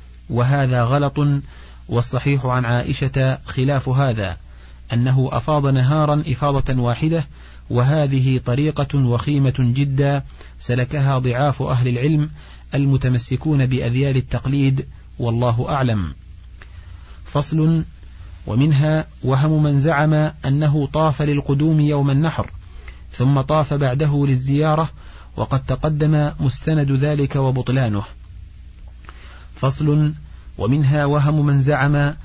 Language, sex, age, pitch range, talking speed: Arabic, male, 30-49, 120-145 Hz, 90 wpm